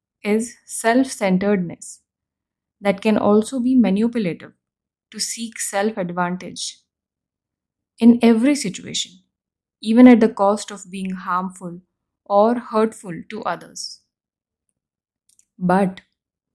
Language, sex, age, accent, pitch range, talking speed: English, female, 10-29, Indian, 190-230 Hz, 90 wpm